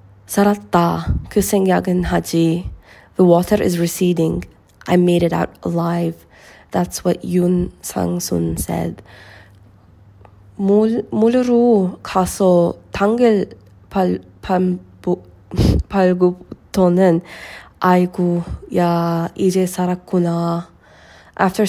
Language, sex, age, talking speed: English, female, 20-39, 45 wpm